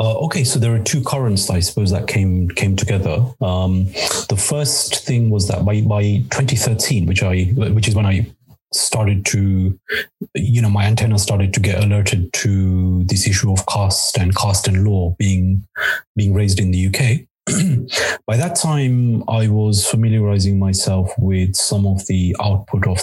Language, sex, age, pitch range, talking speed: English, male, 30-49, 95-110 Hz, 170 wpm